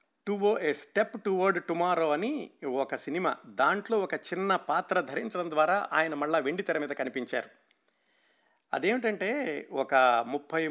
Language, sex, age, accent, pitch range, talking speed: Telugu, male, 50-69, native, 135-175 Hz, 130 wpm